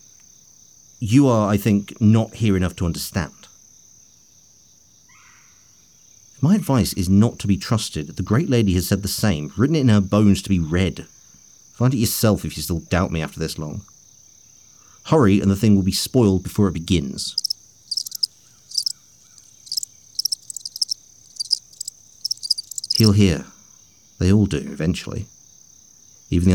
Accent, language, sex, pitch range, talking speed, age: British, English, male, 90-115 Hz, 135 wpm, 50-69